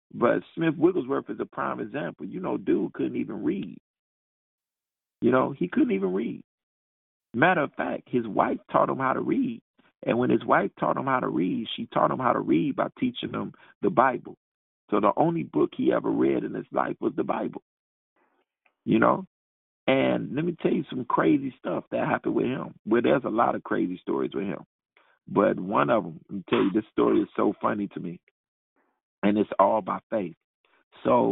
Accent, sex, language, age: American, male, English, 50-69